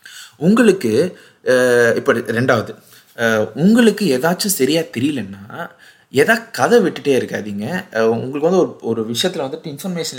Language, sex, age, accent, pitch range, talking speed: Tamil, male, 30-49, native, 115-185 Hz, 105 wpm